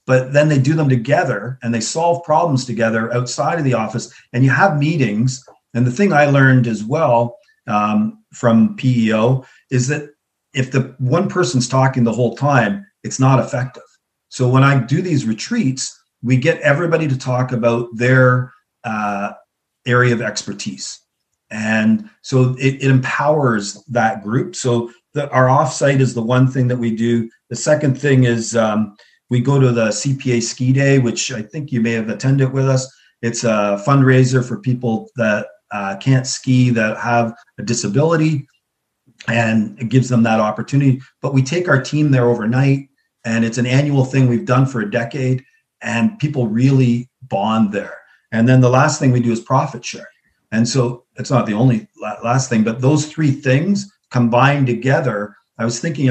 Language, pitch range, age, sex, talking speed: English, 115-135 Hz, 40-59, male, 175 wpm